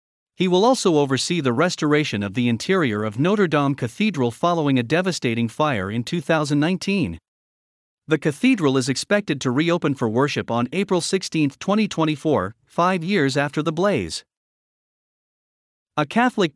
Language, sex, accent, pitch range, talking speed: English, male, American, 125-175 Hz, 140 wpm